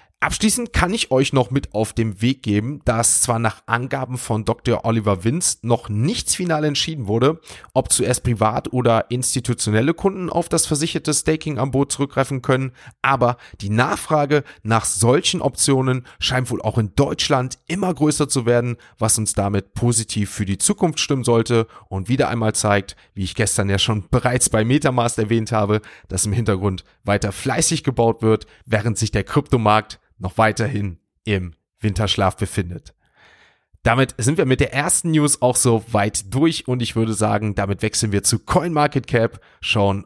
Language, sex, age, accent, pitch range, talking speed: German, male, 30-49, German, 105-135 Hz, 170 wpm